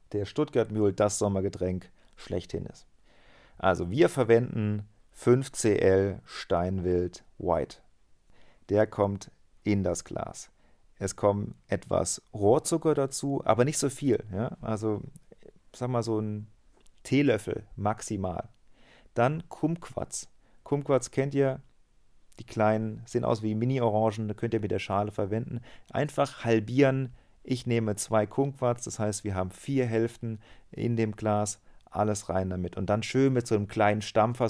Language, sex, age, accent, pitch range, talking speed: German, male, 40-59, German, 95-120 Hz, 135 wpm